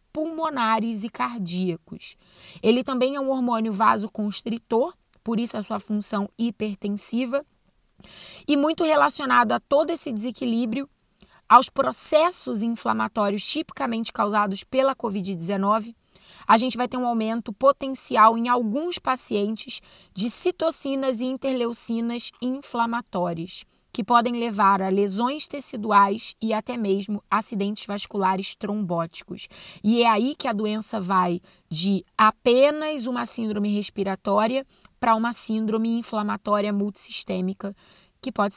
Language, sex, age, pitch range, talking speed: Portuguese, female, 20-39, 205-255 Hz, 115 wpm